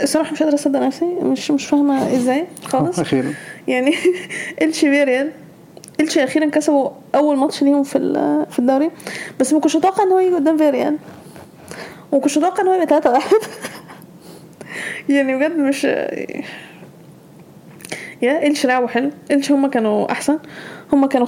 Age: 20-39